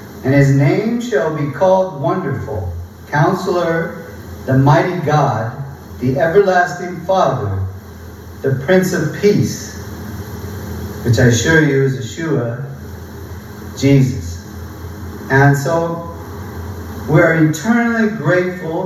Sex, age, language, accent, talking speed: male, 40-59, English, American, 95 wpm